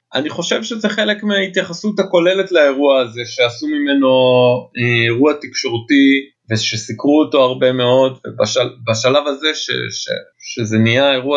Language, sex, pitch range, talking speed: Hebrew, male, 115-155 Hz, 125 wpm